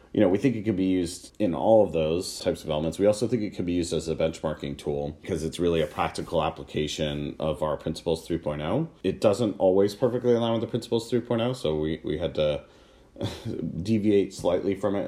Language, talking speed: English, 215 wpm